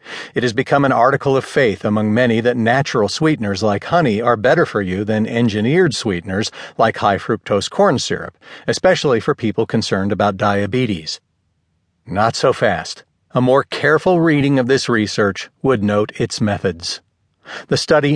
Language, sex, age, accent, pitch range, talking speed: English, male, 40-59, American, 110-150 Hz, 155 wpm